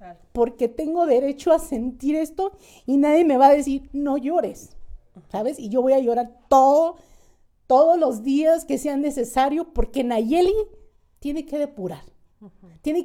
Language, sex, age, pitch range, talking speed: Spanish, female, 50-69, 220-285 Hz, 150 wpm